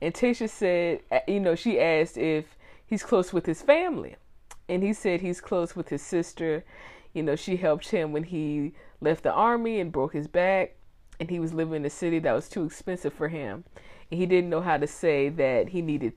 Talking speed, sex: 215 wpm, female